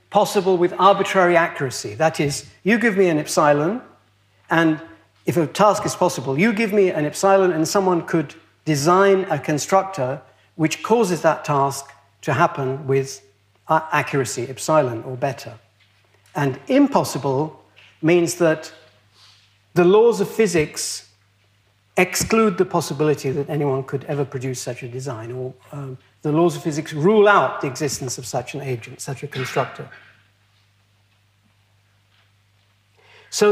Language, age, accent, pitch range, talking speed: English, 60-79, British, 115-180 Hz, 135 wpm